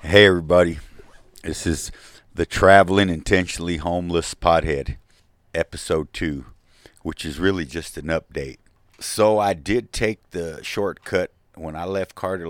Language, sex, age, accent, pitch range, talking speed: English, male, 50-69, American, 80-100 Hz, 130 wpm